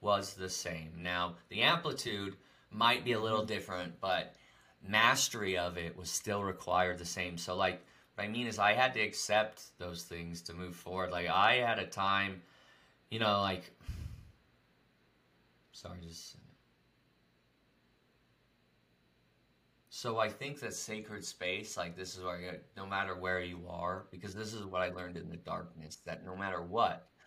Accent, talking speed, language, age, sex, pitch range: American, 165 wpm, English, 30-49, male, 90-110 Hz